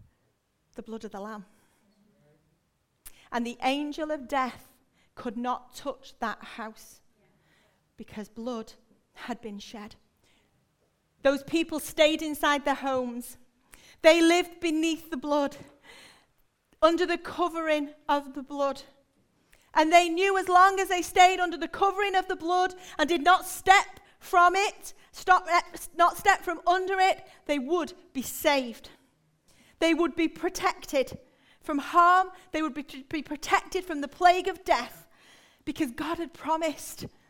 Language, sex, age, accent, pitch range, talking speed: English, female, 40-59, British, 275-345 Hz, 140 wpm